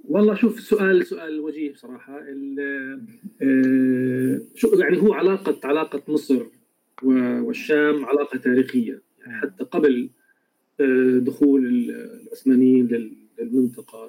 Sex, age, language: male, 40-59, Arabic